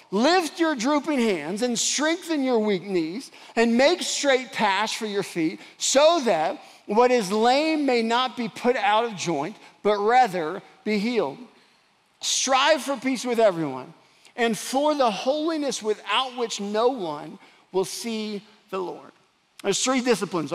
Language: English